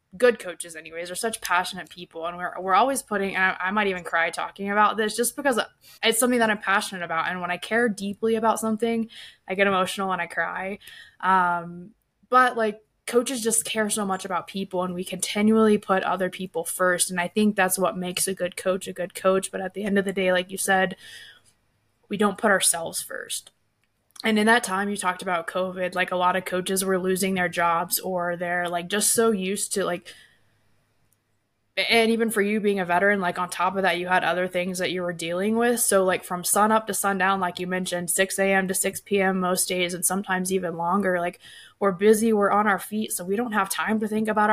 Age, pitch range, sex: 20-39, 180-210 Hz, female